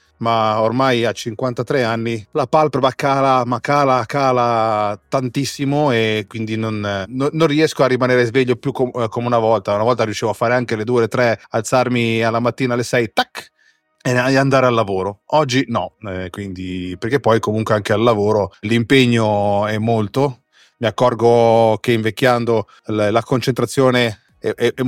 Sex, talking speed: male, 150 wpm